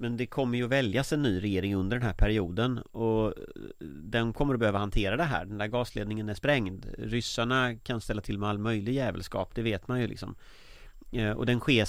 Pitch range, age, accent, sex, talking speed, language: 100-125 Hz, 30-49, Swedish, male, 210 wpm, English